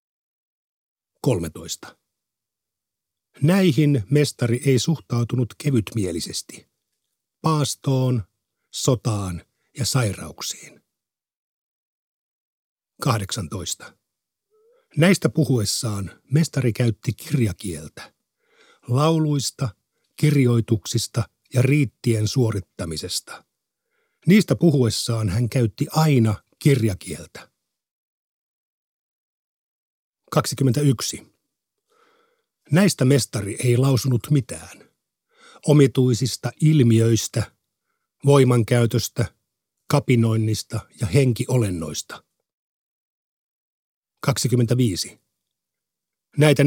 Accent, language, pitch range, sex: native, Finnish, 110-145 Hz, male